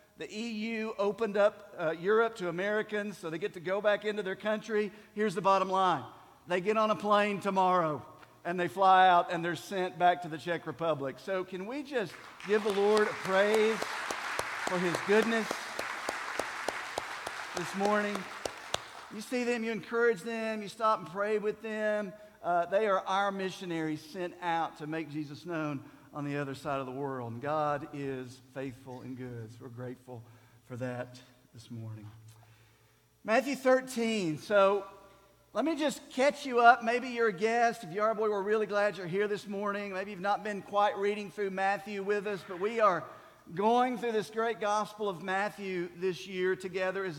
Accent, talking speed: American, 185 wpm